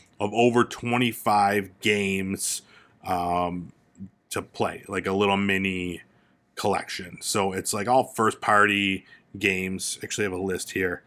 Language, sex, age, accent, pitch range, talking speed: English, male, 30-49, American, 100-125 Hz, 130 wpm